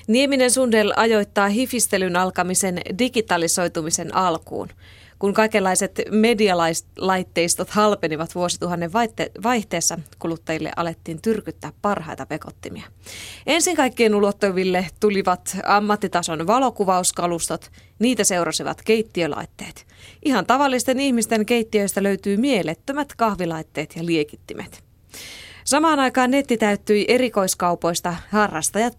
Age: 20-39